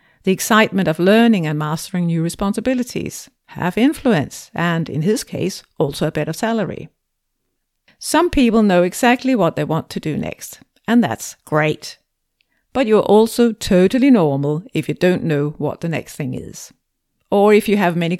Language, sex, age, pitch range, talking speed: English, female, 50-69, 160-230 Hz, 165 wpm